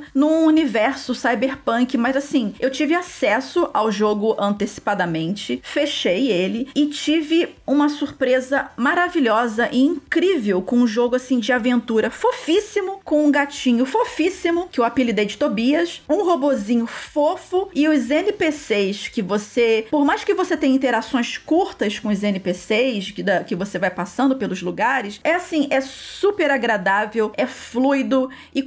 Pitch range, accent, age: 225-295 Hz, Brazilian, 40-59